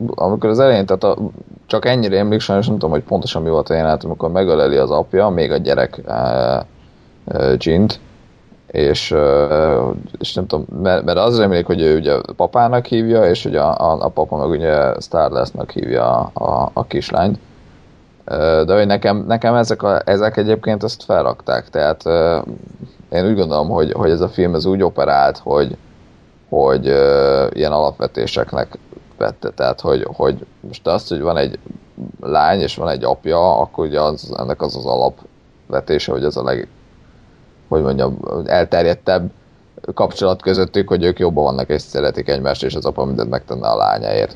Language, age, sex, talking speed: Hungarian, 30-49, male, 170 wpm